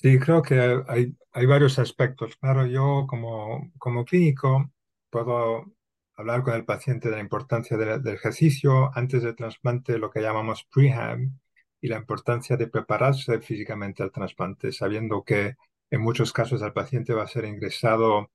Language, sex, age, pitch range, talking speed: English, male, 40-59, 115-135 Hz, 160 wpm